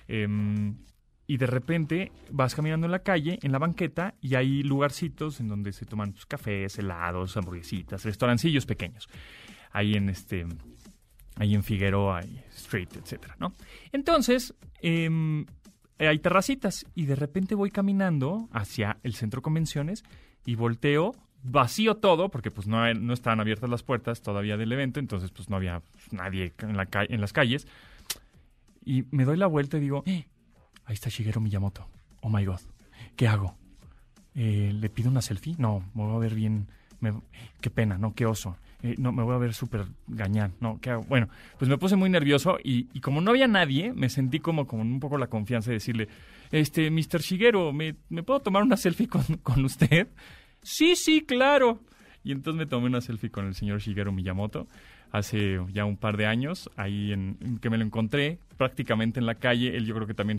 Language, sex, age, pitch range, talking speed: Spanish, male, 30-49, 105-145 Hz, 190 wpm